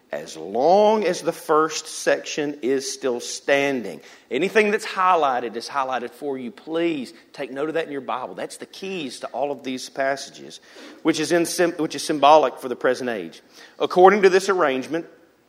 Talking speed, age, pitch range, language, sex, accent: 180 wpm, 40-59, 135-200 Hz, English, male, American